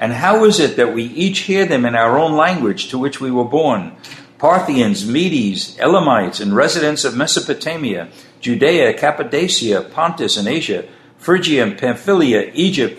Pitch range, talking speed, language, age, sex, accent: 130-170 Hz, 155 wpm, English, 60-79, male, American